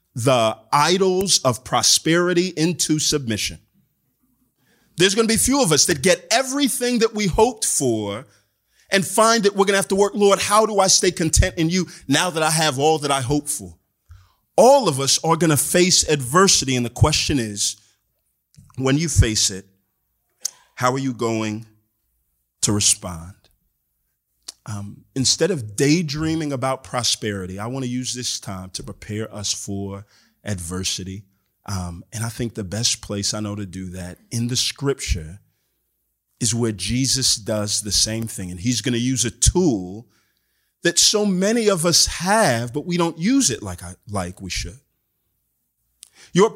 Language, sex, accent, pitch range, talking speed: English, male, American, 105-175 Hz, 170 wpm